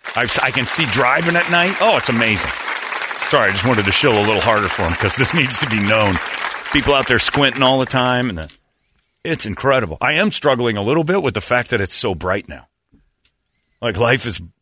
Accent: American